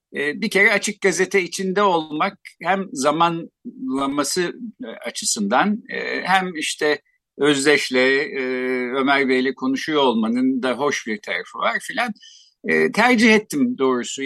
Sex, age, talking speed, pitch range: male, 50-69, 105 wpm, 140-220 Hz